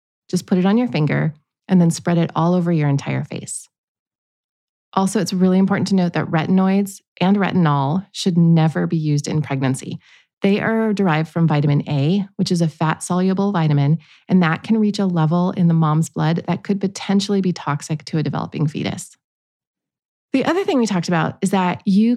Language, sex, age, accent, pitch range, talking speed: English, female, 30-49, American, 155-195 Hz, 190 wpm